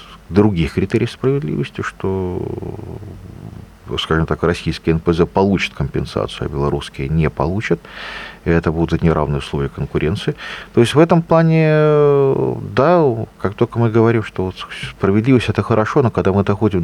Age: 40-59